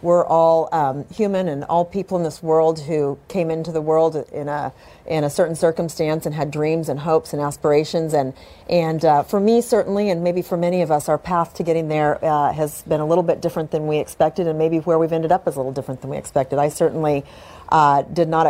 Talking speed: 235 wpm